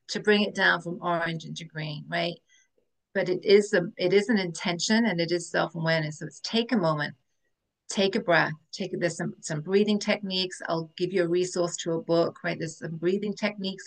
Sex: female